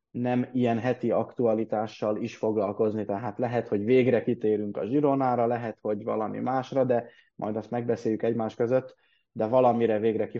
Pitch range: 110-130 Hz